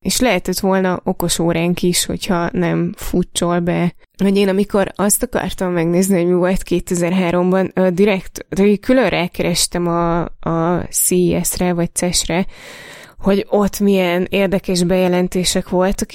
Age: 20-39